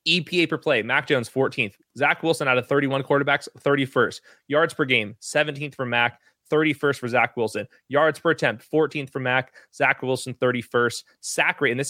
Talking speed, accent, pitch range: 180 wpm, American, 125-150 Hz